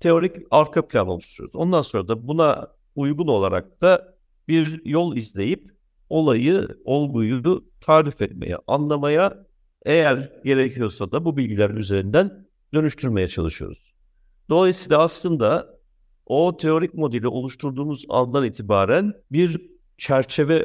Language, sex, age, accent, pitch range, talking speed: Turkish, male, 60-79, native, 100-155 Hz, 110 wpm